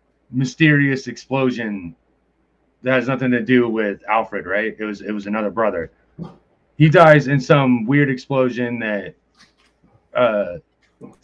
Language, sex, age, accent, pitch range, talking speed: English, male, 30-49, American, 115-140 Hz, 130 wpm